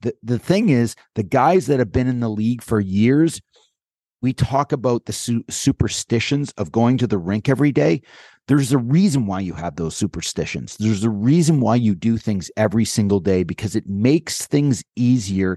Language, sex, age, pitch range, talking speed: English, male, 30-49, 105-130 Hz, 195 wpm